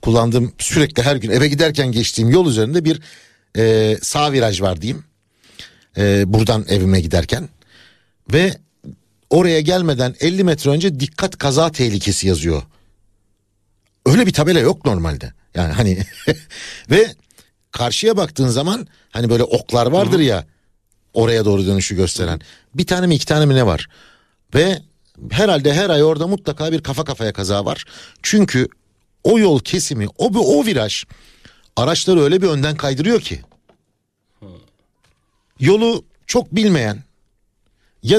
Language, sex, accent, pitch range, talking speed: Turkish, male, native, 100-160 Hz, 135 wpm